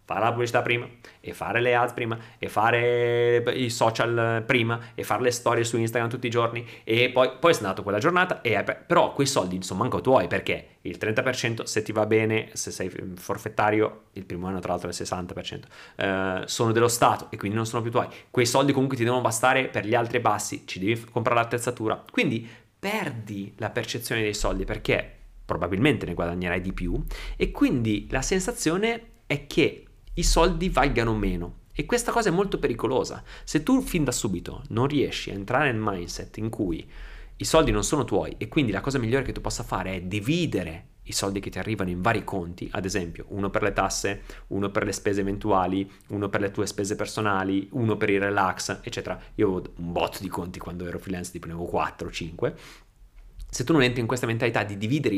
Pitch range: 100-125 Hz